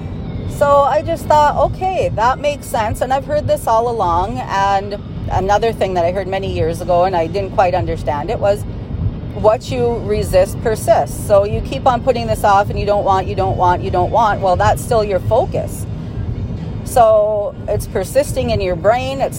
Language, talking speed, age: English, 195 wpm, 40-59